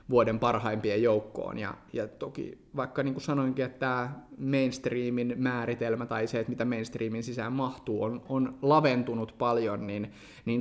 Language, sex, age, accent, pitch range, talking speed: Finnish, male, 30-49, native, 110-135 Hz, 155 wpm